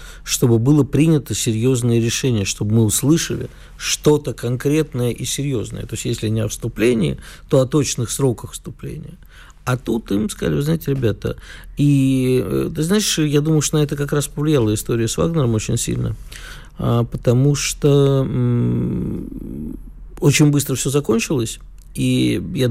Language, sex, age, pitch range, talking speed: Russian, male, 50-69, 110-145 Hz, 145 wpm